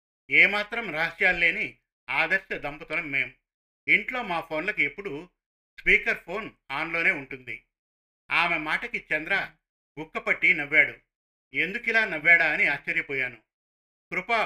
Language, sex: Telugu, male